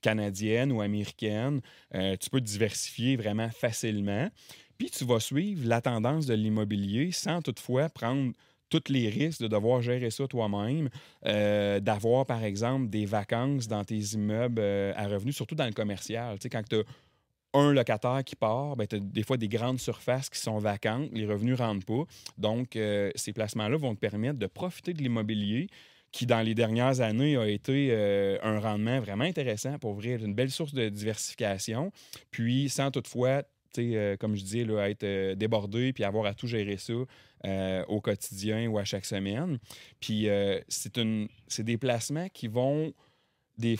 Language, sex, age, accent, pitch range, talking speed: French, male, 30-49, Canadian, 105-130 Hz, 175 wpm